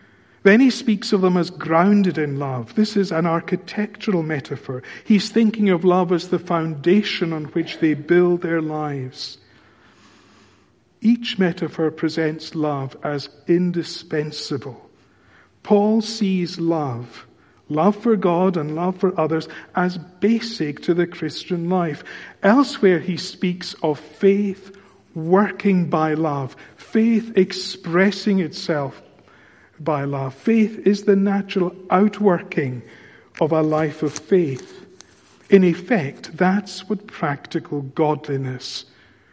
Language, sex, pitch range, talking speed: English, male, 130-190 Hz, 120 wpm